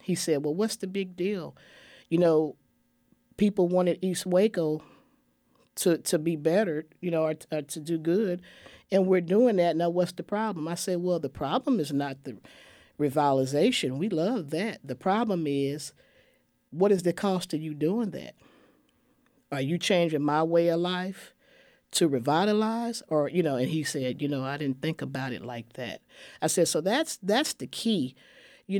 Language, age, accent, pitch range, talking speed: English, 50-69, American, 150-195 Hz, 180 wpm